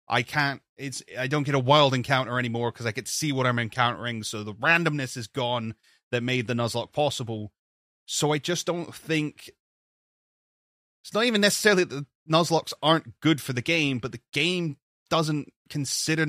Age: 20-39